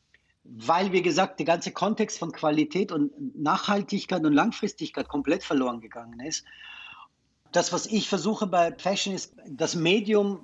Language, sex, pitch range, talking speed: German, male, 155-195 Hz, 145 wpm